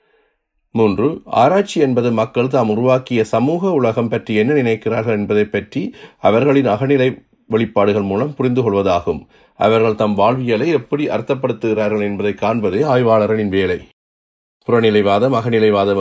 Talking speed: 110 wpm